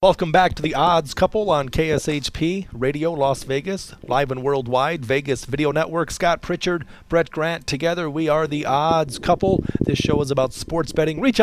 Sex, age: male, 40-59